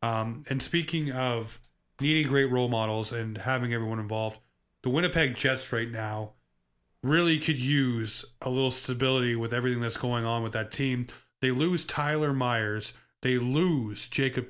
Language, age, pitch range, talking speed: English, 30-49, 115-135 Hz, 155 wpm